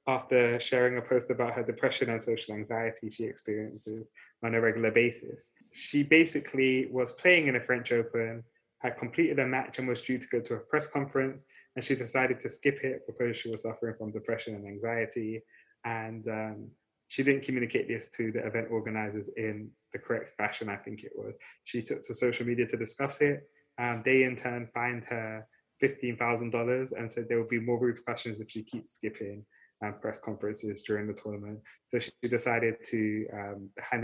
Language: English